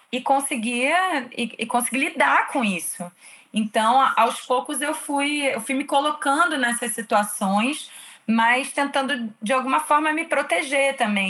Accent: Brazilian